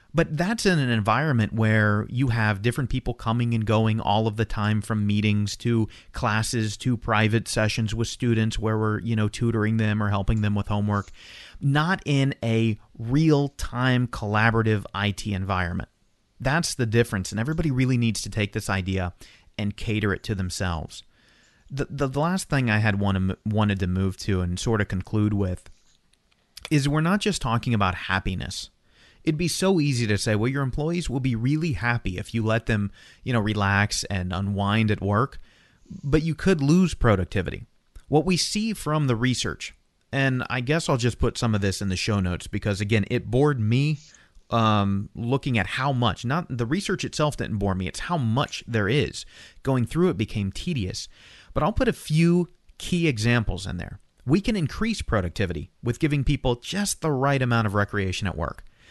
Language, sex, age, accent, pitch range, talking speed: English, male, 30-49, American, 105-140 Hz, 185 wpm